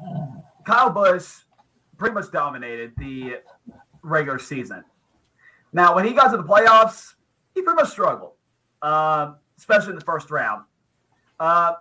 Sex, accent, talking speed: male, American, 130 wpm